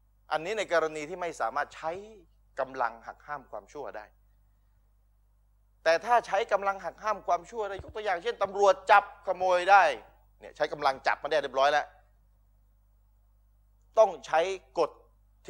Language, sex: Thai, male